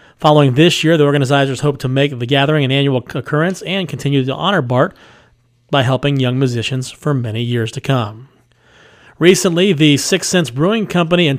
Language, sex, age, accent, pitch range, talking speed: English, male, 40-59, American, 130-155 Hz, 180 wpm